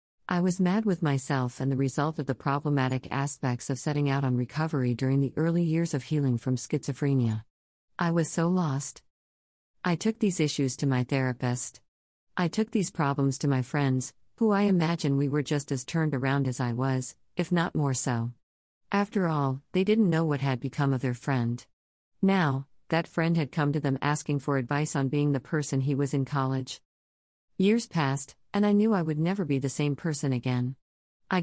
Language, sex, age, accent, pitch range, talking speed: English, female, 50-69, American, 130-160 Hz, 195 wpm